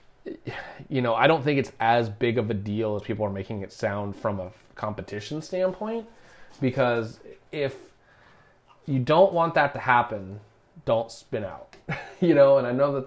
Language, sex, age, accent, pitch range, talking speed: English, male, 30-49, American, 110-135 Hz, 175 wpm